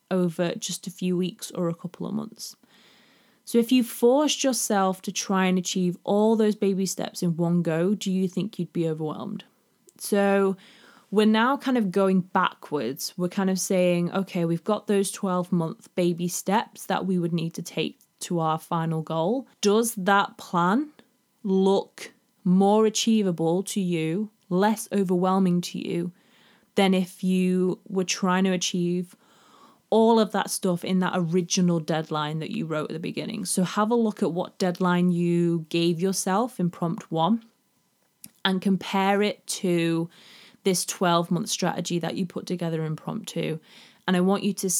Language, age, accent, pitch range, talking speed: English, 20-39, British, 175-215 Hz, 165 wpm